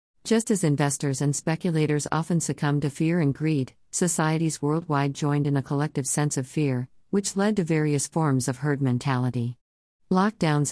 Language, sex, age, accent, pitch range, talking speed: English, female, 50-69, American, 130-165 Hz, 160 wpm